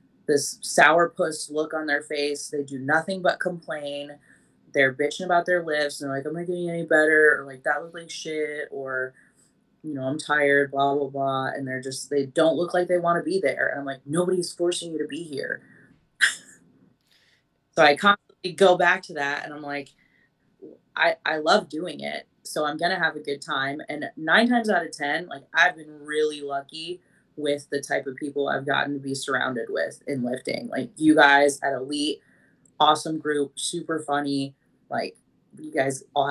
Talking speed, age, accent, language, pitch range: 195 wpm, 20-39, American, English, 140-165 Hz